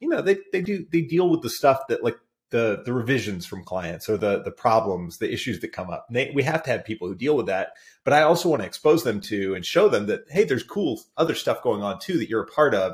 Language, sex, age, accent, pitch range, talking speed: English, male, 30-49, American, 95-125 Hz, 290 wpm